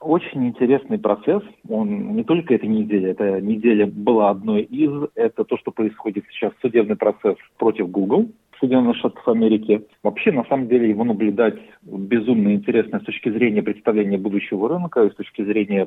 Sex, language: male, Russian